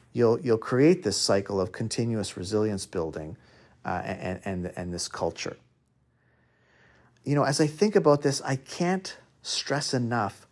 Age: 40-59